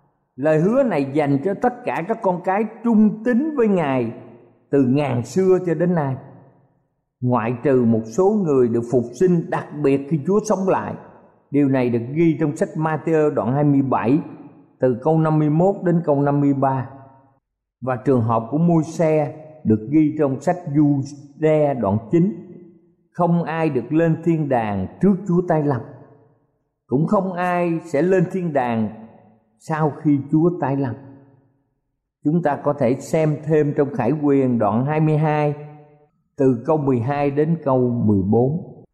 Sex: male